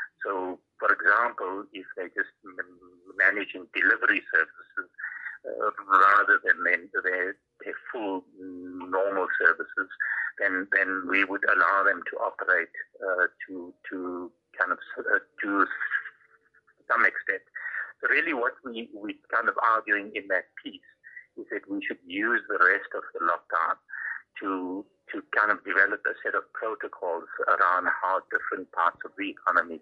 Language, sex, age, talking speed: English, male, 60-79, 145 wpm